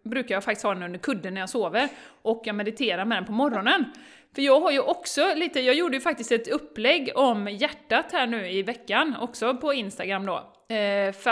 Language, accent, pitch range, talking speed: Swedish, native, 200-260 Hz, 210 wpm